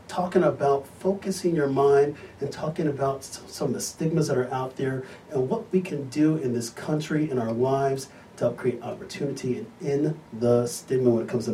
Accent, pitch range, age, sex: American, 125-175 Hz, 40-59, male